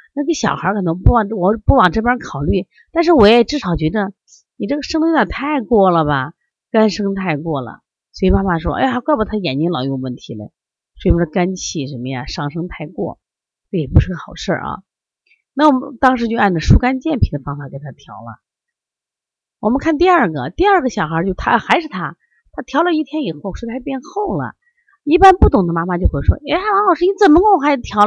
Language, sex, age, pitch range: Chinese, female, 30-49, 165-270 Hz